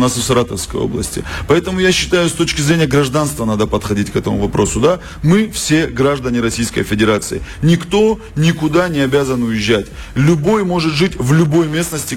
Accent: native